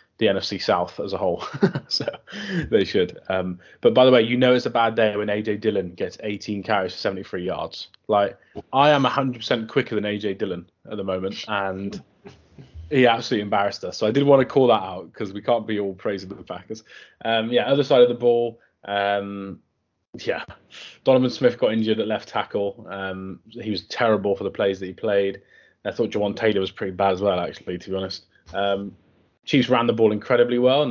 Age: 20-39